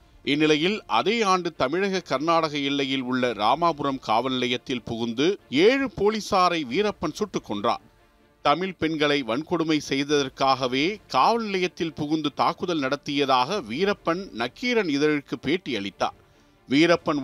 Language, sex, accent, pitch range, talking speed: Tamil, male, native, 140-185 Hz, 105 wpm